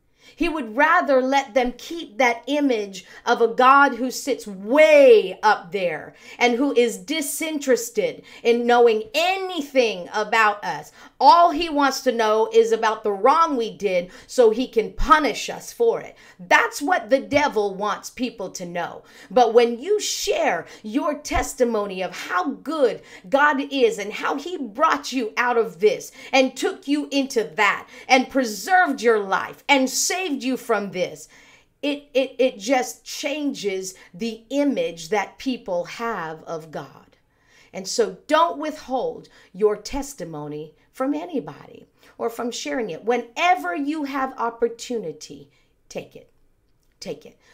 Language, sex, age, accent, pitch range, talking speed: English, female, 50-69, American, 205-275 Hz, 145 wpm